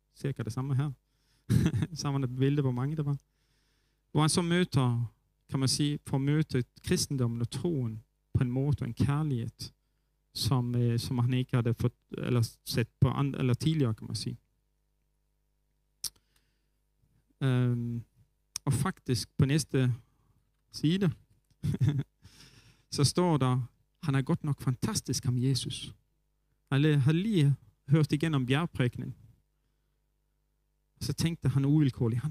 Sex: male